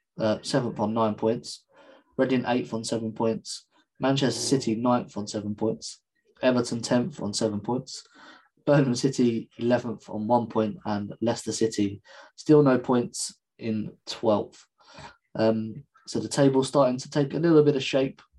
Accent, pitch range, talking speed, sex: British, 115-130 Hz, 150 wpm, male